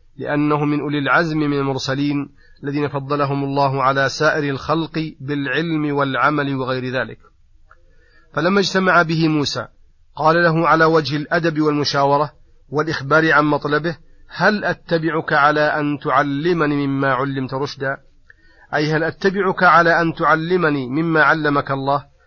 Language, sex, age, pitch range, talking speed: Arabic, male, 40-59, 140-165 Hz, 125 wpm